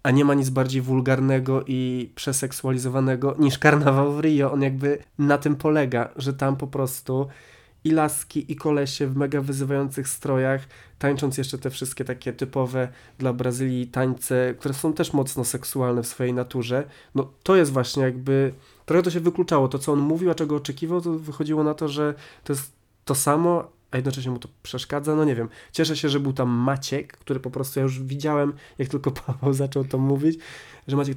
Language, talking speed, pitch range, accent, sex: Polish, 190 wpm, 130-150 Hz, native, male